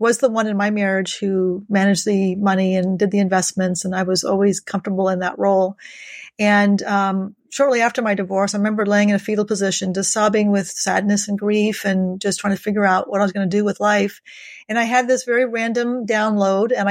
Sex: female